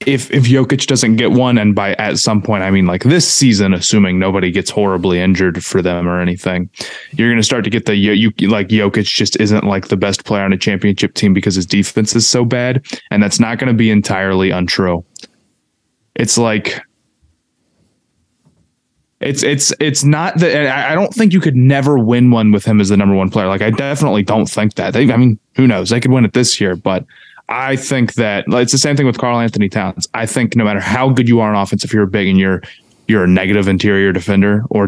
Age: 20-39